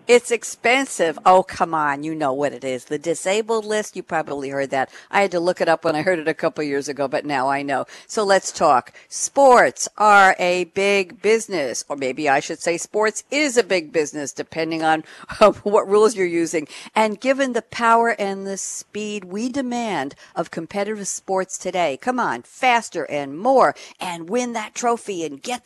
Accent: American